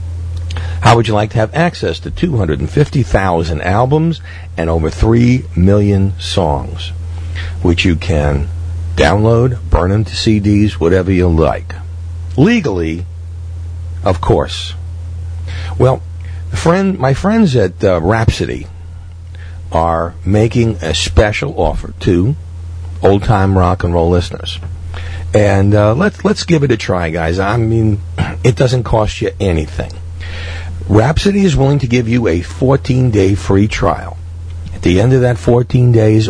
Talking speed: 135 wpm